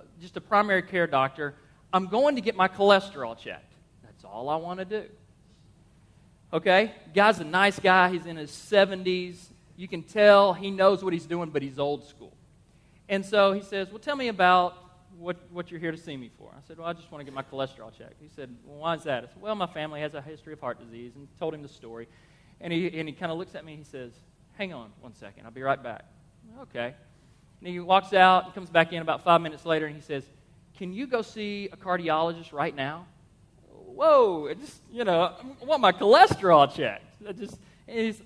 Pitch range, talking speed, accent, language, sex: 150-200 Hz, 225 wpm, American, English, male